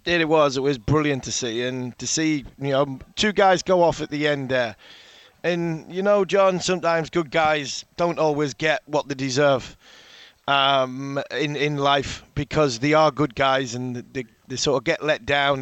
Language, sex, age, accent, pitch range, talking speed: English, male, 30-49, British, 130-150 Hz, 195 wpm